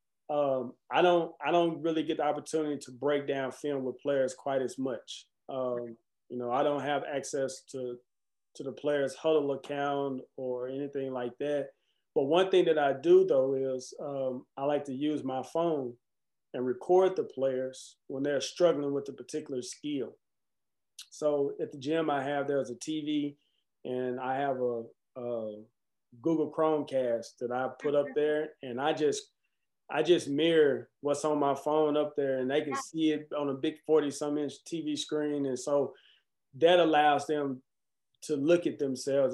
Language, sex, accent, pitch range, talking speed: English, male, American, 130-150 Hz, 175 wpm